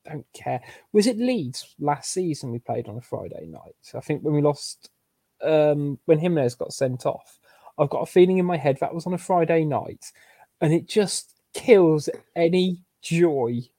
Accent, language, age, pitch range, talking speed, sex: British, English, 20-39, 125-170 Hz, 185 wpm, male